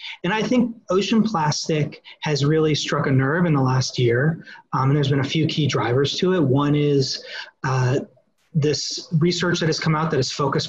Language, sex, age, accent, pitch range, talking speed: English, male, 30-49, American, 130-160 Hz, 200 wpm